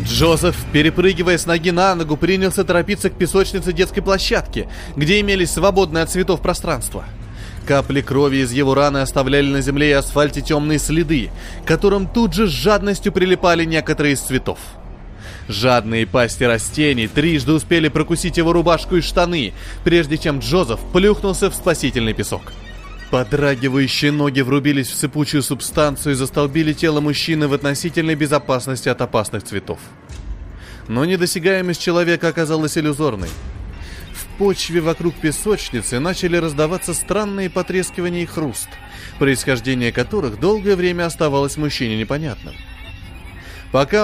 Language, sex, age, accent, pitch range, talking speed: Russian, male, 20-39, native, 125-175 Hz, 130 wpm